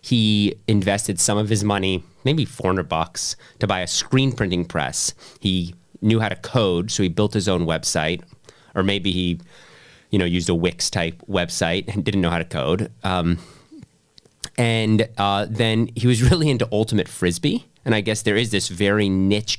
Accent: American